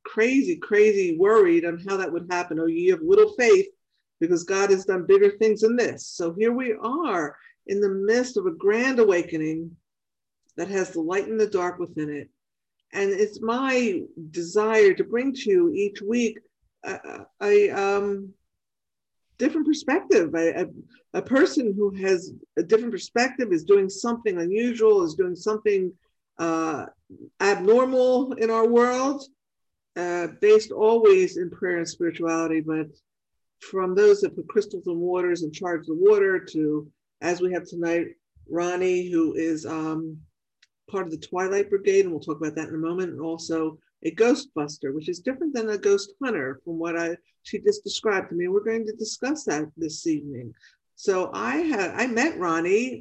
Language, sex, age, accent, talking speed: English, female, 50-69, American, 170 wpm